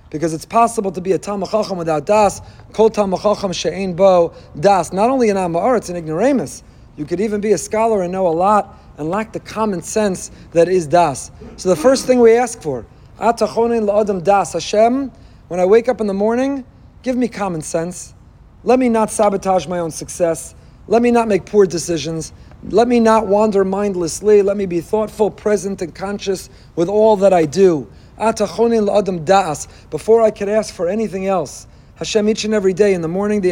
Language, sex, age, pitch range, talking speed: English, male, 40-59, 175-215 Hz, 190 wpm